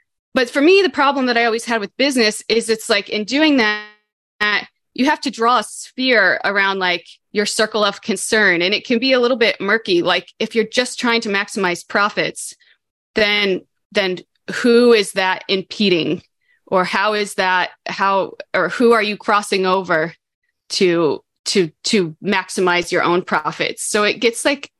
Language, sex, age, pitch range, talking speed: English, female, 20-39, 185-230 Hz, 175 wpm